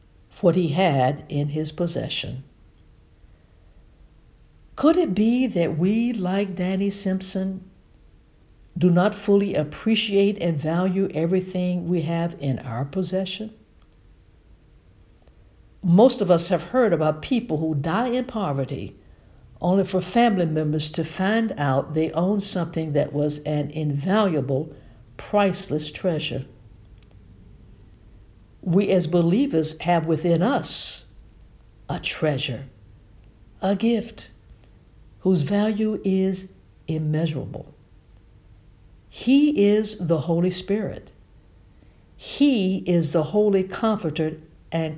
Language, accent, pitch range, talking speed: English, American, 130-195 Hz, 105 wpm